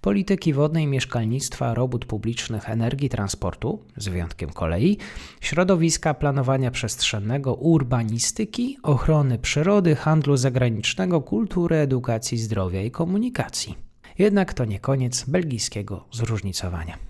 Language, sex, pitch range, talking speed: Polish, male, 110-160 Hz, 100 wpm